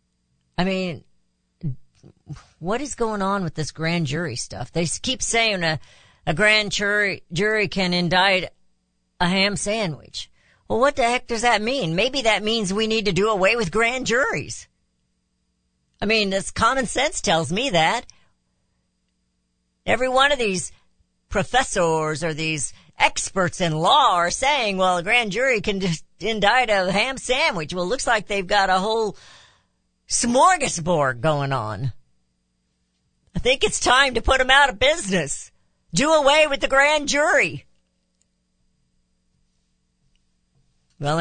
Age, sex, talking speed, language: 50-69, female, 145 wpm, English